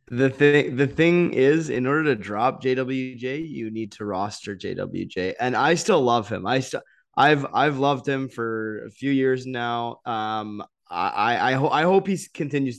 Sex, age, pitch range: male, 20-39, 110-135 Hz